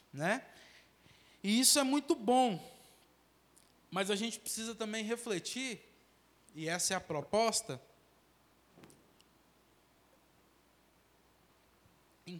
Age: 20-39